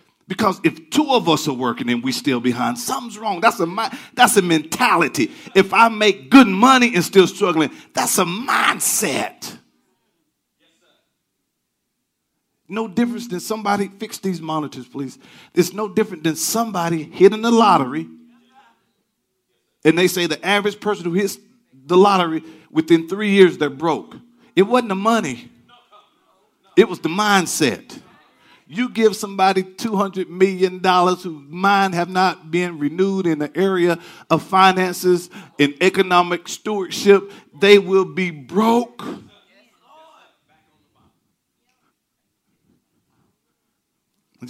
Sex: male